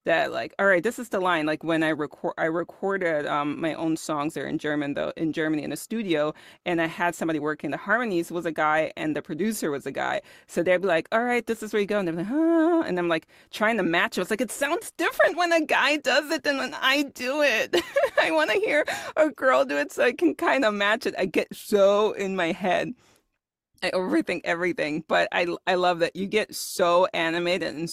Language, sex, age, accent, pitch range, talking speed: English, female, 30-49, American, 155-205 Hz, 245 wpm